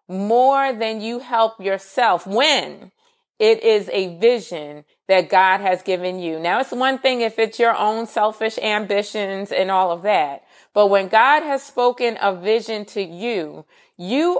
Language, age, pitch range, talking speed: English, 30-49, 185-255 Hz, 165 wpm